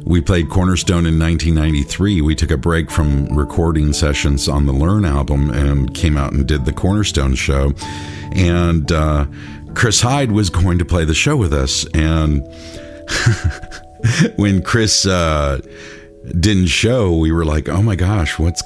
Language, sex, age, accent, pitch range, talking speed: English, male, 50-69, American, 75-90 Hz, 160 wpm